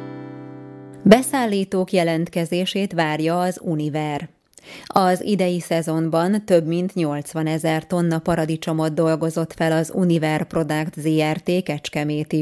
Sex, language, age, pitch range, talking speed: female, Hungarian, 20-39, 155-185 Hz, 100 wpm